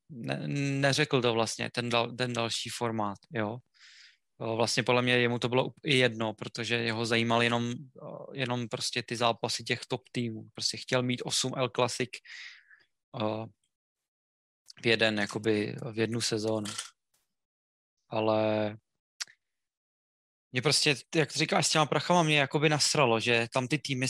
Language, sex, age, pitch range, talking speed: Czech, male, 20-39, 115-140 Hz, 140 wpm